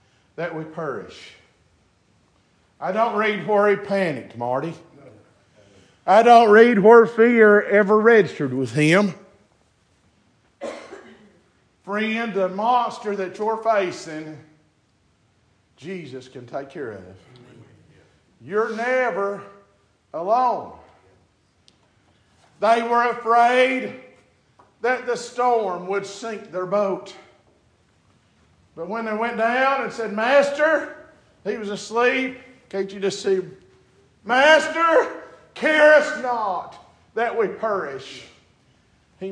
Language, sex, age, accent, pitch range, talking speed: English, male, 50-69, American, 150-240 Hz, 100 wpm